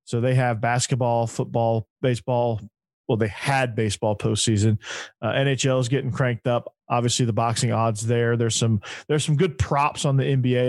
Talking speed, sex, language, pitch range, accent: 175 wpm, male, English, 115-140 Hz, American